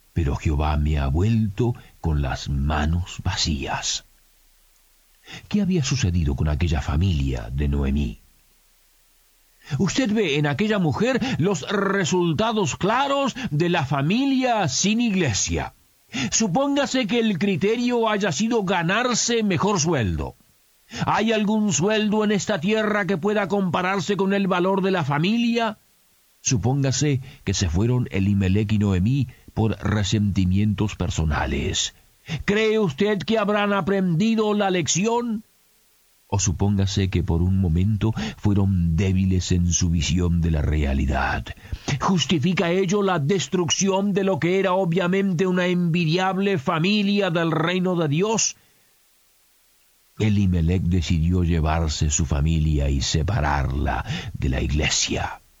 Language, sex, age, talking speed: Spanish, male, 50-69, 120 wpm